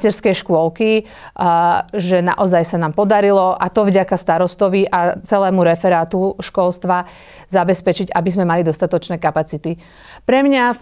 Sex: female